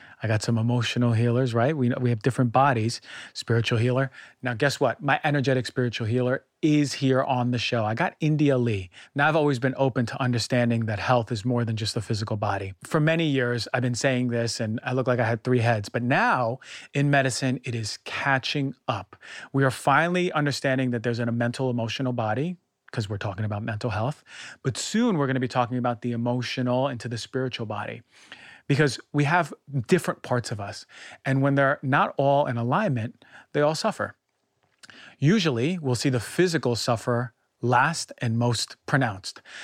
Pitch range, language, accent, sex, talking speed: 115-140 Hz, English, American, male, 190 wpm